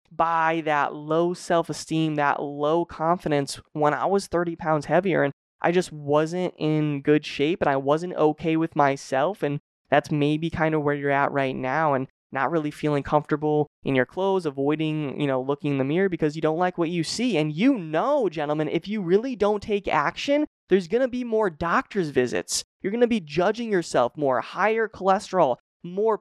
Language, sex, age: English, male, 20-39